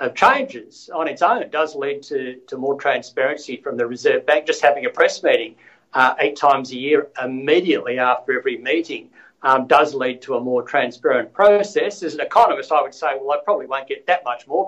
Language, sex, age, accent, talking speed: English, male, 60-79, Australian, 210 wpm